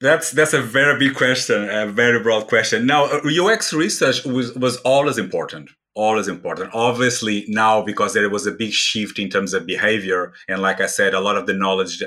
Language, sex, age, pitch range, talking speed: English, male, 30-49, 95-120 Hz, 200 wpm